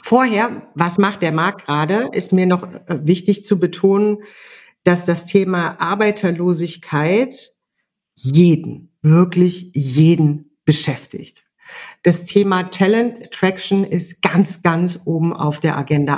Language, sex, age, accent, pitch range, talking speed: German, female, 40-59, German, 165-200 Hz, 115 wpm